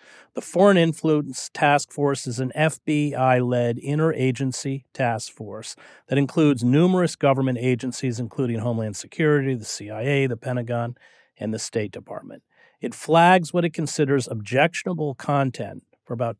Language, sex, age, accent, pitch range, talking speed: English, male, 40-59, American, 115-145 Hz, 130 wpm